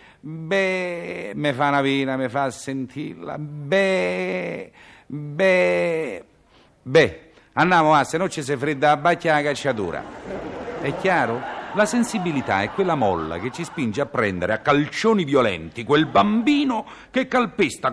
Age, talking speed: 50-69, 135 wpm